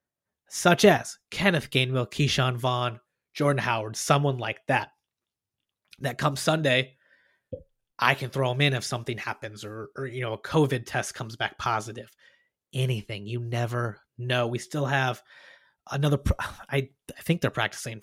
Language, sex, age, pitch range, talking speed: English, male, 30-49, 130-170 Hz, 155 wpm